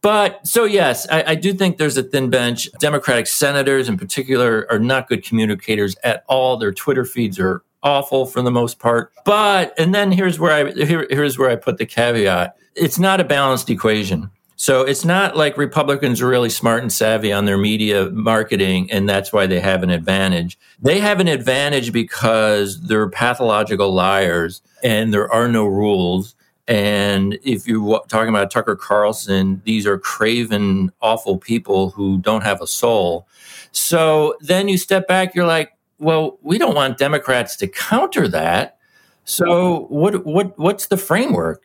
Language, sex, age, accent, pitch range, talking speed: English, male, 40-59, American, 110-160 Hz, 175 wpm